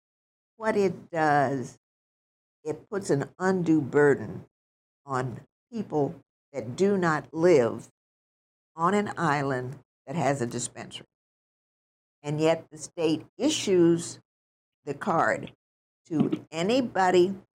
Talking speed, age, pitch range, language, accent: 105 wpm, 60-79, 135-175 Hz, English, American